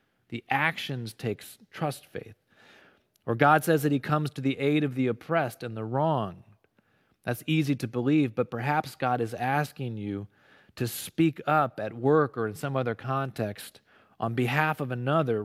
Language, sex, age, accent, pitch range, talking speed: English, male, 30-49, American, 120-150 Hz, 170 wpm